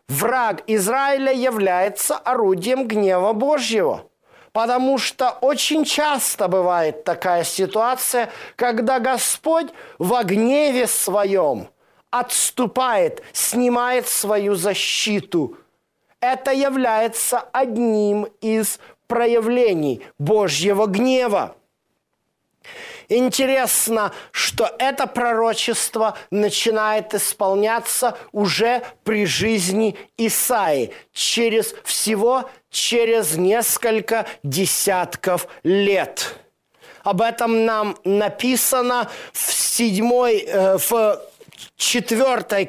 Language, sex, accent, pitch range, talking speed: Russian, male, native, 205-255 Hz, 75 wpm